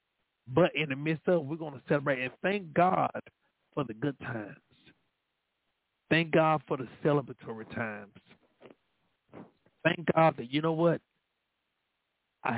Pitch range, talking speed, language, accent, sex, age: 120-160 Hz, 145 wpm, English, American, male, 40-59